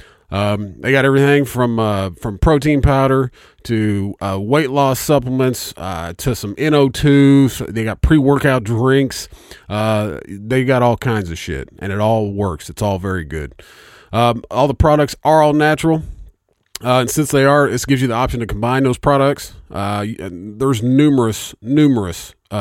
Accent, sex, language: American, male, English